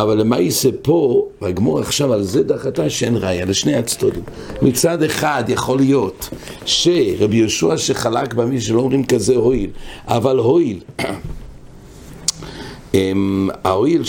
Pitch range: 100-135 Hz